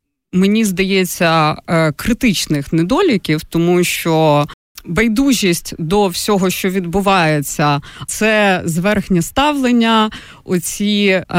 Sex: female